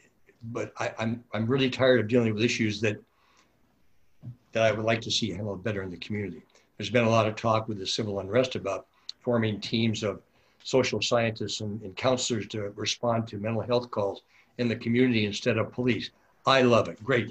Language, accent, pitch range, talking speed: English, American, 105-125 Hz, 200 wpm